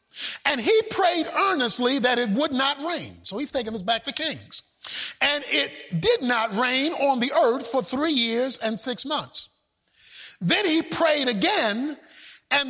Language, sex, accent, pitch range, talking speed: English, male, American, 250-360 Hz, 165 wpm